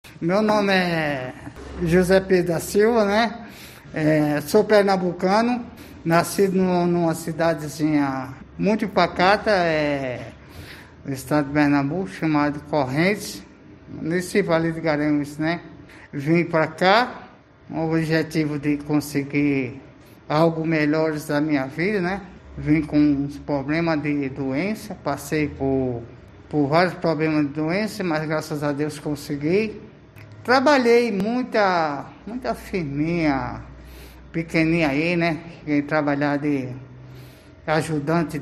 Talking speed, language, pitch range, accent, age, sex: 115 wpm, Portuguese, 145-180 Hz, Brazilian, 60-79, male